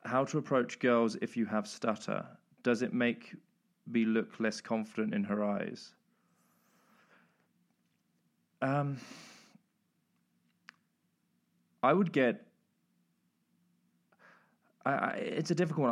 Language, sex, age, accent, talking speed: English, male, 20-39, British, 100 wpm